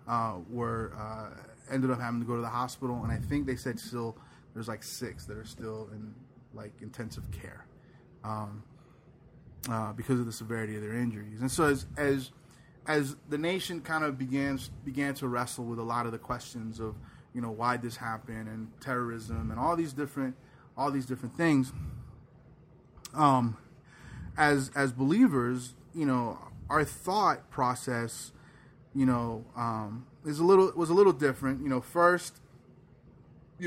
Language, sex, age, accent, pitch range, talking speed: English, male, 20-39, American, 115-140 Hz, 170 wpm